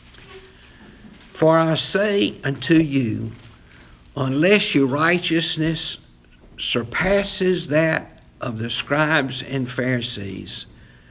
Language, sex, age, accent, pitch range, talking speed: English, male, 60-79, American, 105-160 Hz, 80 wpm